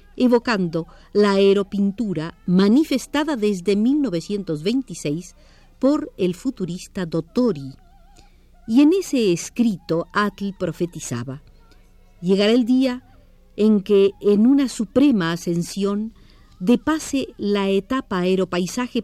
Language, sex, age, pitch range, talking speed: Spanish, female, 50-69, 175-240 Hz, 95 wpm